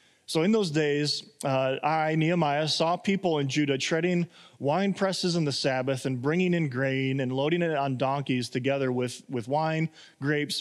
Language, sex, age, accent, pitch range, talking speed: English, male, 20-39, American, 140-180 Hz, 175 wpm